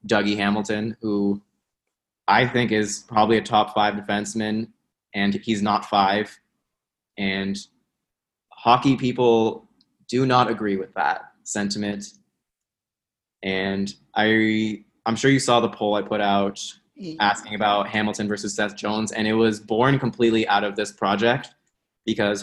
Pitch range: 100-115 Hz